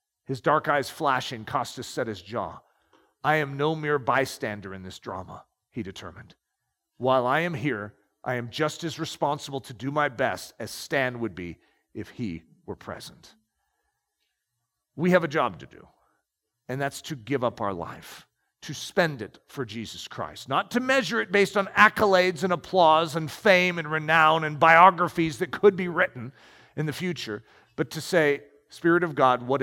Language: English